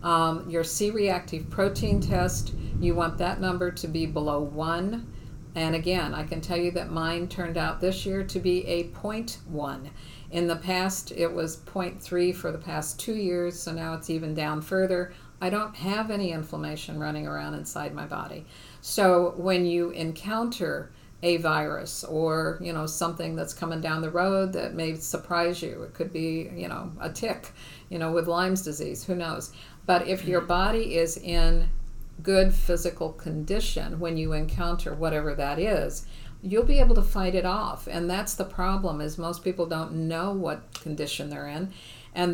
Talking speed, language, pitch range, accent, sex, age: 175 wpm, English, 155-180 Hz, American, female, 50-69